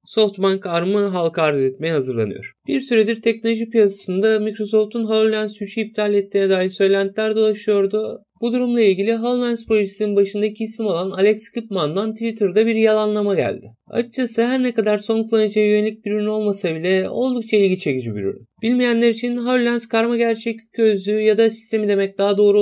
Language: Turkish